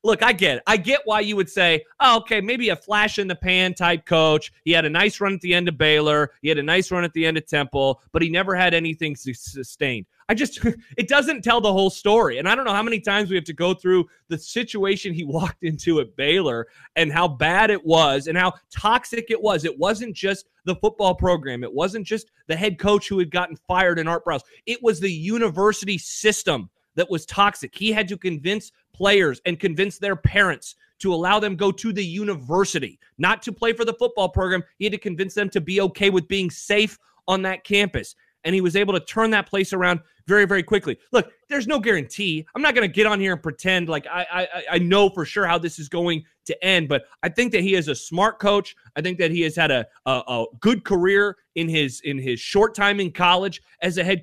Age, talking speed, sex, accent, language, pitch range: 30-49, 235 wpm, male, American, English, 165-205 Hz